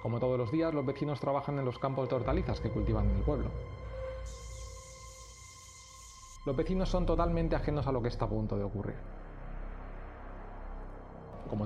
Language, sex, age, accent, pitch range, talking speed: Spanish, male, 30-49, Spanish, 105-140 Hz, 160 wpm